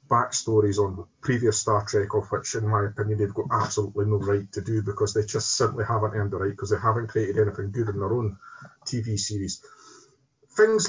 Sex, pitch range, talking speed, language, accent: male, 110-140 Hz, 205 wpm, English, British